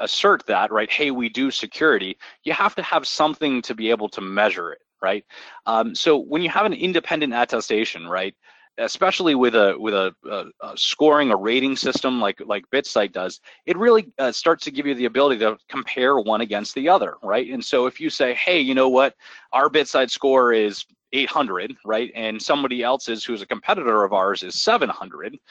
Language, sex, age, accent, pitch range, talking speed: English, male, 30-49, American, 105-140 Hz, 205 wpm